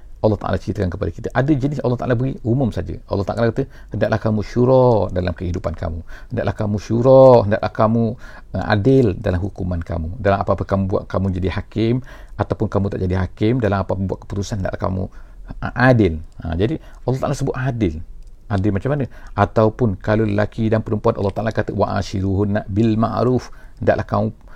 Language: English